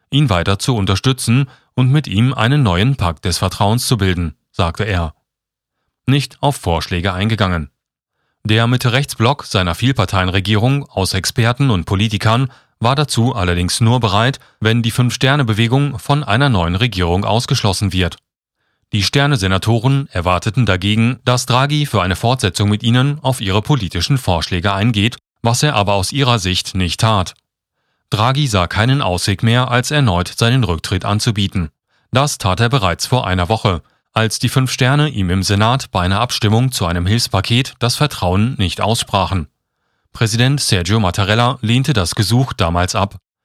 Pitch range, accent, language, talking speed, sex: 95-125 Hz, German, German, 150 wpm, male